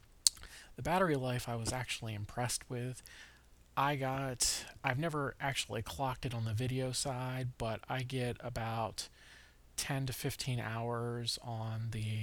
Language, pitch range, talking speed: English, 110-130 Hz, 140 wpm